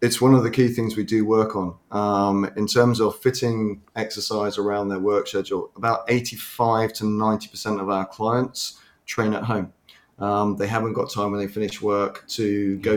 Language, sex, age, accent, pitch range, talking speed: English, male, 30-49, British, 100-110 Hz, 190 wpm